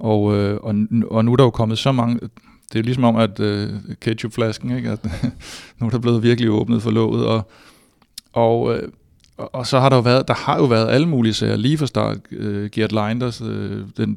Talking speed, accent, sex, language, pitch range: 230 wpm, native, male, Danish, 105-120 Hz